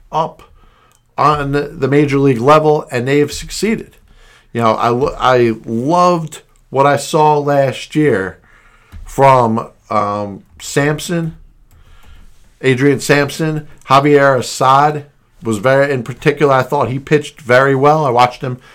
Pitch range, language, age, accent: 130-150 Hz, English, 50-69, American